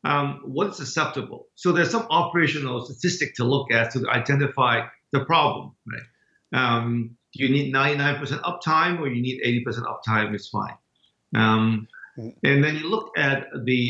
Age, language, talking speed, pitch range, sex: 50-69, English, 155 wpm, 120-145 Hz, male